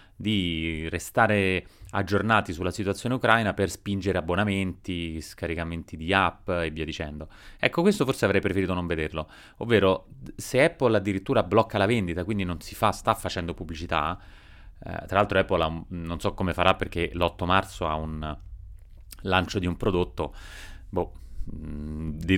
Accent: native